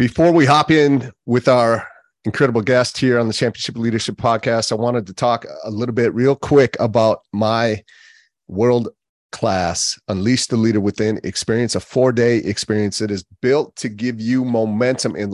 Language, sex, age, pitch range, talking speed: English, male, 30-49, 95-120 Hz, 165 wpm